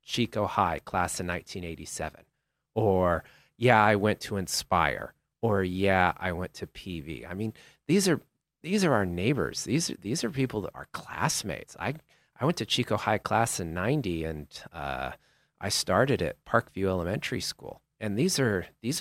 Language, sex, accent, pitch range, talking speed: English, male, American, 90-130 Hz, 170 wpm